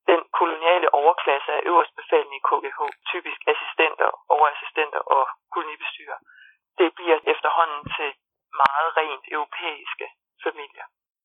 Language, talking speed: Danish, 110 wpm